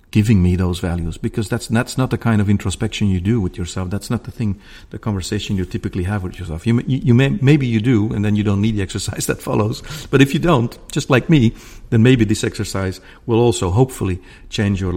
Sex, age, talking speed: male, 50-69, 235 wpm